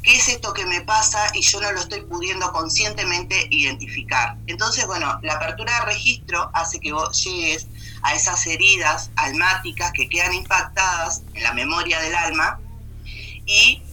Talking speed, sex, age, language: 160 wpm, female, 30-49, Spanish